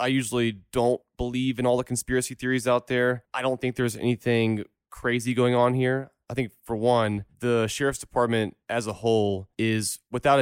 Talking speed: 185 wpm